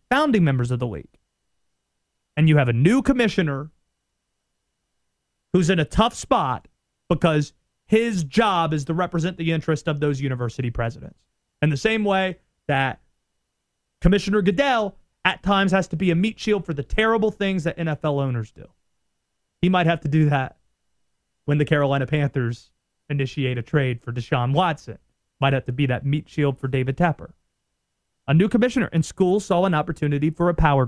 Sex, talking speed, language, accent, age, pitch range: male, 170 wpm, English, American, 30-49, 140-195 Hz